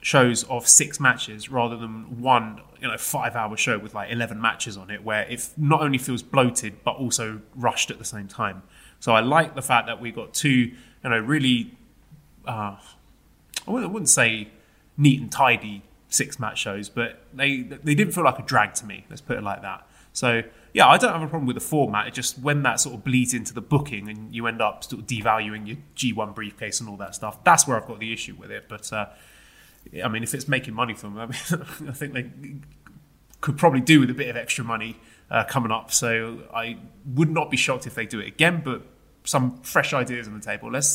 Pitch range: 110-135 Hz